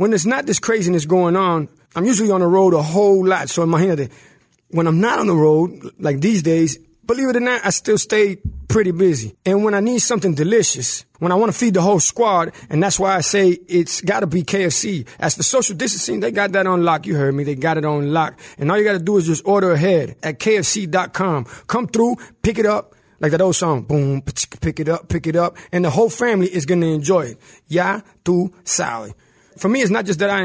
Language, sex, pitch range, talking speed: English, male, 160-200 Hz, 245 wpm